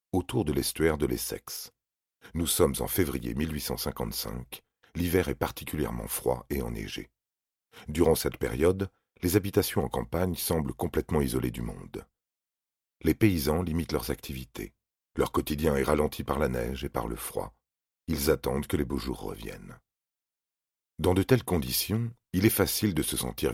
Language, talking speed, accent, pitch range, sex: French, 155 wpm, French, 65-90 Hz, male